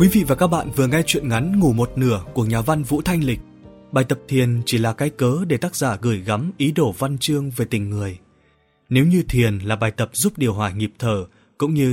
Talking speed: 250 wpm